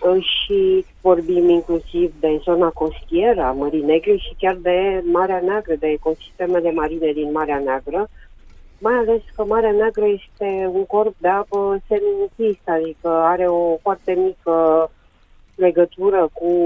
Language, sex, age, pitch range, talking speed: Romanian, female, 30-49, 160-185 Hz, 135 wpm